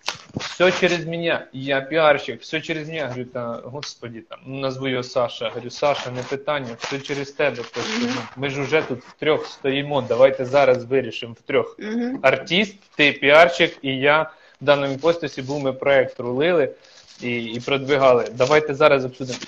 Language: Ukrainian